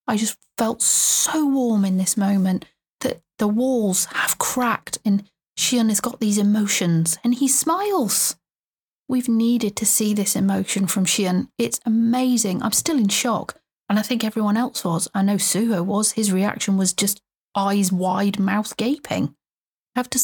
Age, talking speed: 30-49, 165 wpm